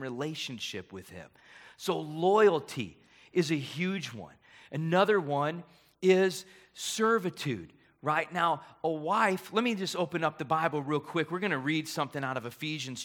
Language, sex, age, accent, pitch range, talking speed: English, male, 30-49, American, 115-160 Hz, 155 wpm